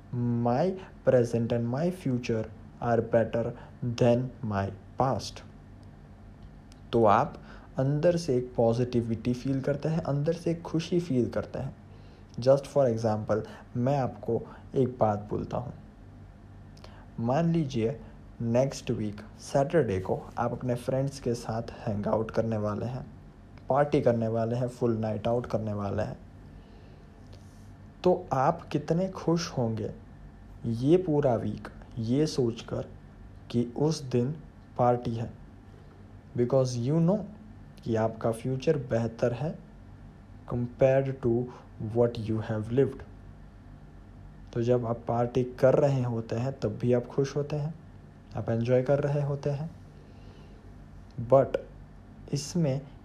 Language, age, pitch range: Hindi, 20-39, 105-130 Hz